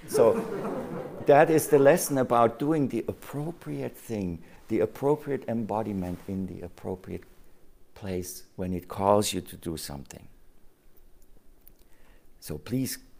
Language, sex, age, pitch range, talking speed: English, male, 60-79, 85-105 Hz, 120 wpm